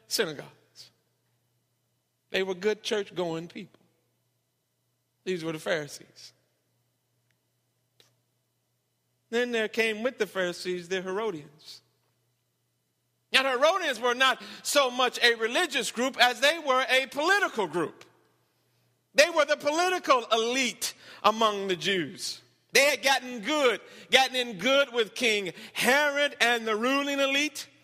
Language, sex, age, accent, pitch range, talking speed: English, male, 50-69, American, 205-280 Hz, 120 wpm